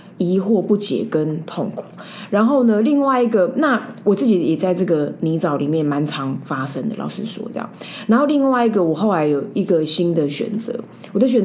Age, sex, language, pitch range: 20-39, female, Chinese, 165-215 Hz